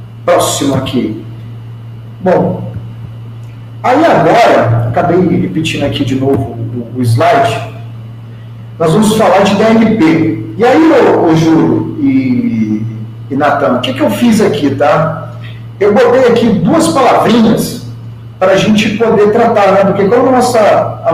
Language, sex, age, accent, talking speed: Portuguese, male, 40-59, Brazilian, 130 wpm